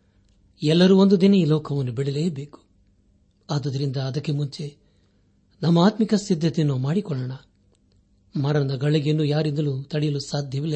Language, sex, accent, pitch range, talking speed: Kannada, male, native, 100-155 Hz, 95 wpm